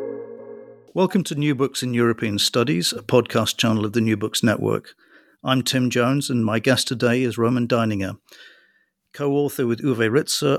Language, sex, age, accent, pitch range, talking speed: English, male, 50-69, British, 110-135 Hz, 165 wpm